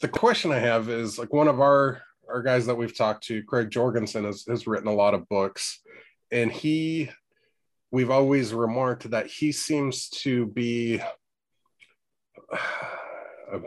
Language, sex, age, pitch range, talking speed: English, male, 30-49, 105-130 Hz, 155 wpm